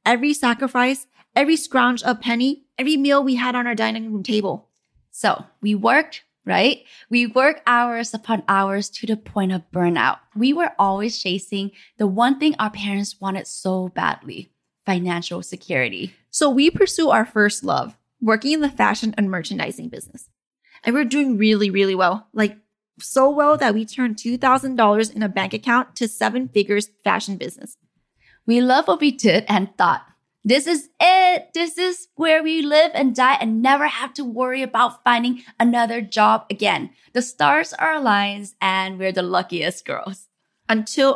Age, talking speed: 10-29, 170 wpm